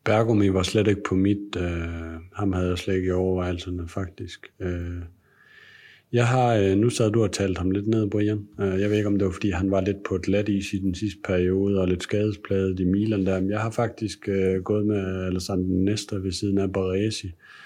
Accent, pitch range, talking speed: native, 95-105 Hz, 220 wpm